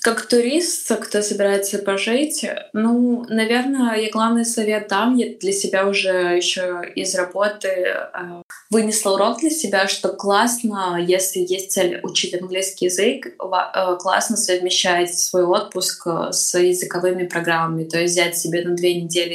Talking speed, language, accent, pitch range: 145 wpm, Russian, native, 175-205 Hz